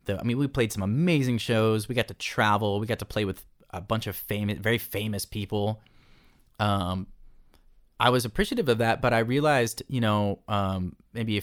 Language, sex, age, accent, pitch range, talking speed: English, male, 20-39, American, 100-120 Hz, 200 wpm